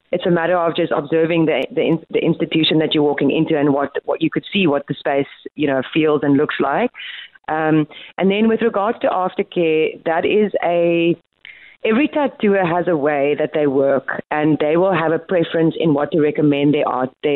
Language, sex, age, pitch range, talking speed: English, female, 30-49, 155-185 Hz, 205 wpm